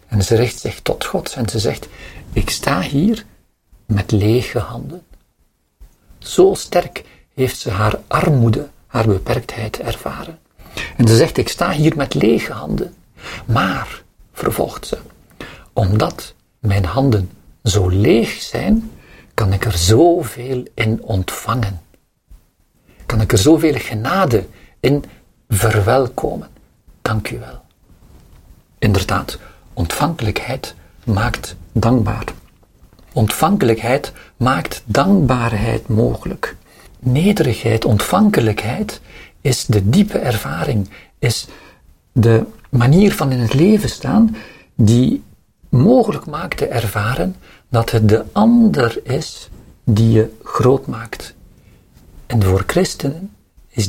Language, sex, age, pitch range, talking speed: Dutch, male, 50-69, 105-135 Hz, 110 wpm